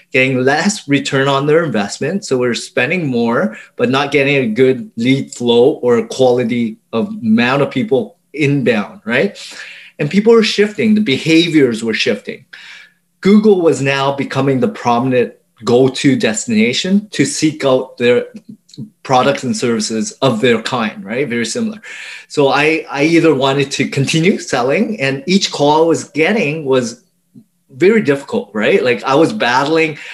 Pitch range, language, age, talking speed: 135-195 Hz, English, 30-49, 155 wpm